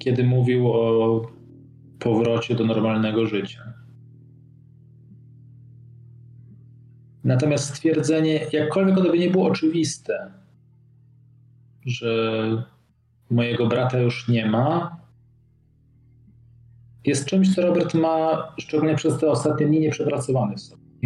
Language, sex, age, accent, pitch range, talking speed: Polish, male, 40-59, native, 120-140 Hz, 95 wpm